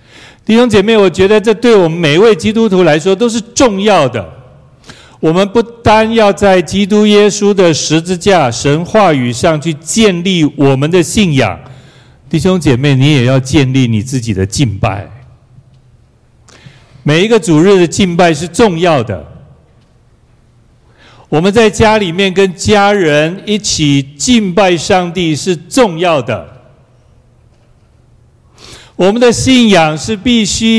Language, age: Chinese, 60-79